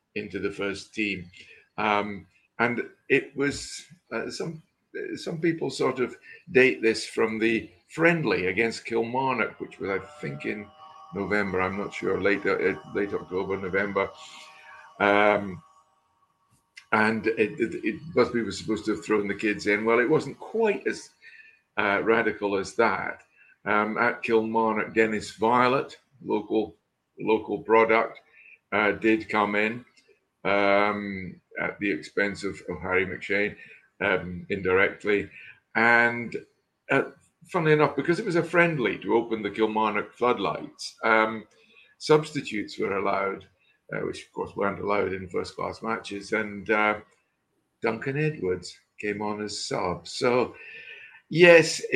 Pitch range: 100-125 Hz